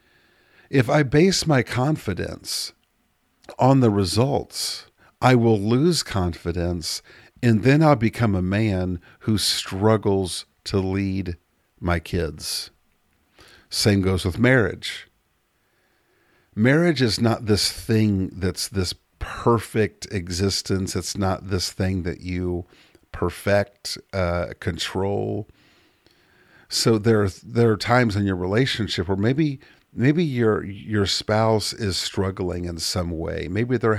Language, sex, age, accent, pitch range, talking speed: English, male, 50-69, American, 90-115 Hz, 120 wpm